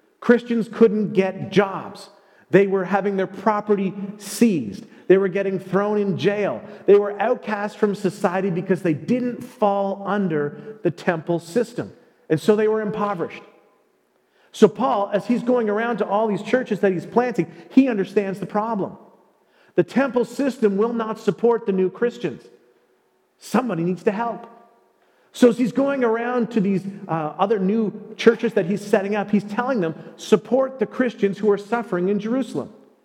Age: 40-59